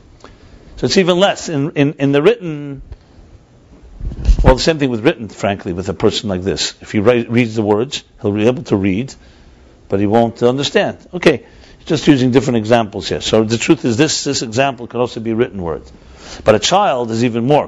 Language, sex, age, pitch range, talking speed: English, male, 60-79, 105-130 Hz, 205 wpm